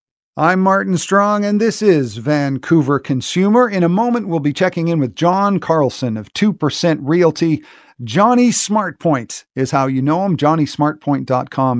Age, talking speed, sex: 50-69, 145 wpm, male